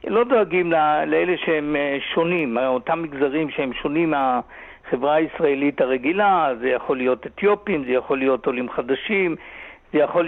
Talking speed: 135 wpm